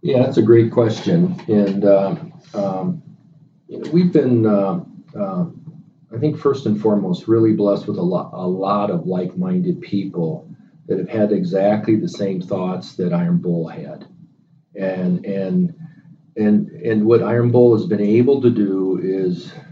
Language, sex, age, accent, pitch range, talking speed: English, male, 40-59, American, 100-165 Hz, 155 wpm